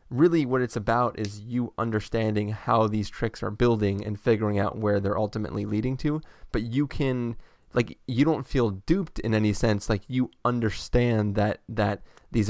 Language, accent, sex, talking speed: English, American, male, 180 wpm